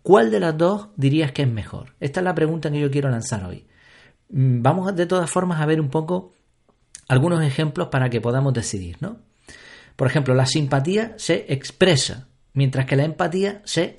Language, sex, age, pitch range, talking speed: Spanish, male, 40-59, 130-175 Hz, 190 wpm